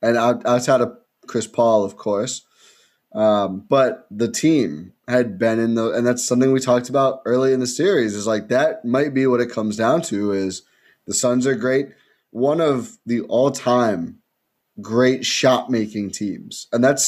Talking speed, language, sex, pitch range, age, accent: 185 wpm, English, male, 110-145 Hz, 20-39, American